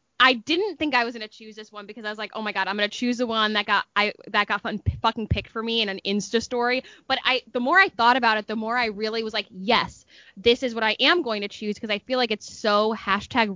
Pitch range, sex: 205-245 Hz, female